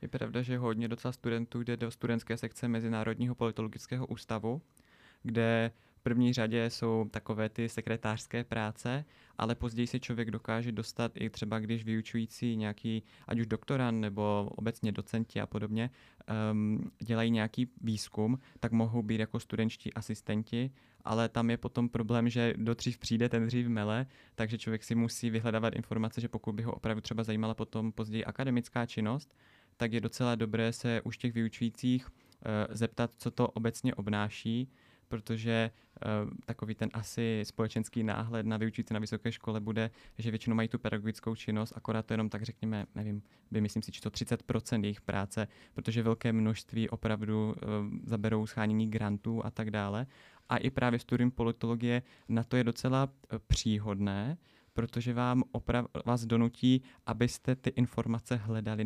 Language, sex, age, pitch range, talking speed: Czech, male, 20-39, 110-120 Hz, 160 wpm